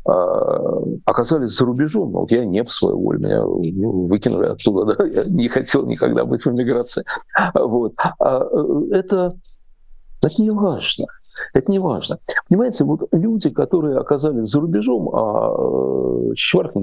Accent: native